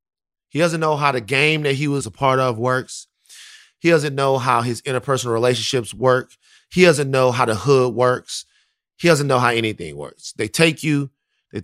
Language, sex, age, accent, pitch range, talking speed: English, male, 30-49, American, 110-145 Hz, 195 wpm